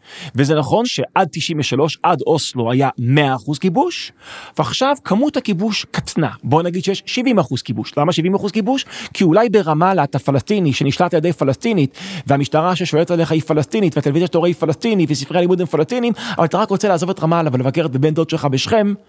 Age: 40-59